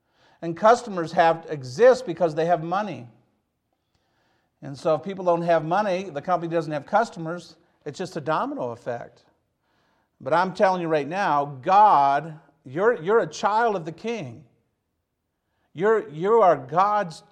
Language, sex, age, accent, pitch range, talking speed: English, male, 50-69, American, 145-190 Hz, 150 wpm